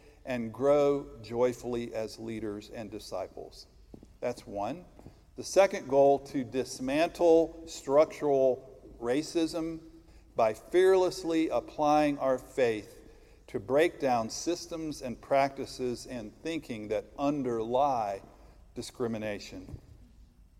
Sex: male